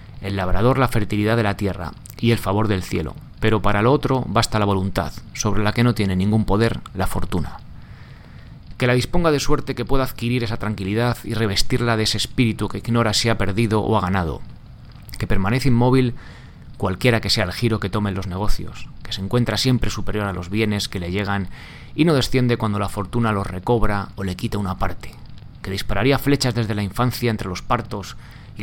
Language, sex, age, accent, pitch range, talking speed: Spanish, male, 30-49, Spanish, 100-120 Hz, 205 wpm